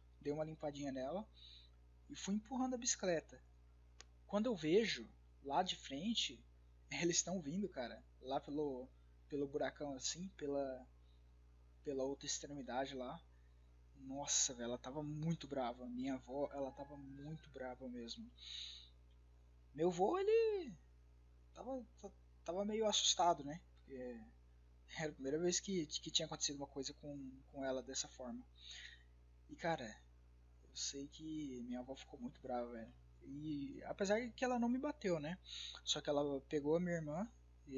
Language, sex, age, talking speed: Portuguese, male, 20-39, 145 wpm